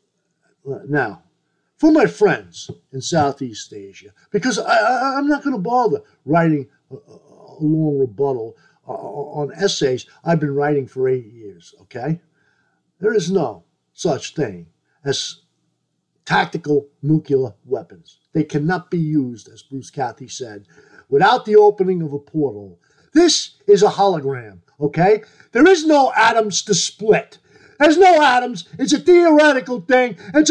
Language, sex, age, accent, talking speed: English, male, 50-69, American, 140 wpm